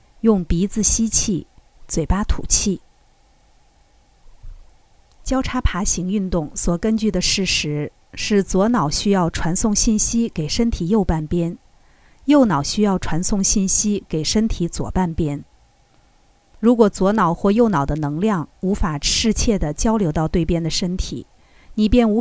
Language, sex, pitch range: Chinese, female, 150-215 Hz